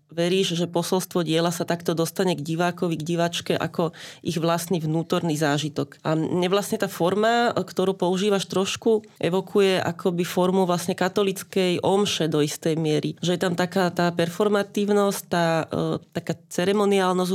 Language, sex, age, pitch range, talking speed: Slovak, female, 30-49, 170-190 Hz, 145 wpm